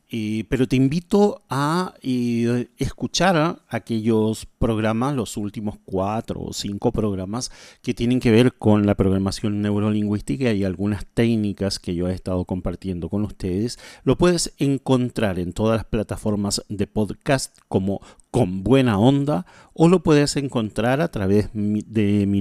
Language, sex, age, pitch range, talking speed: Spanish, male, 40-59, 100-130 Hz, 140 wpm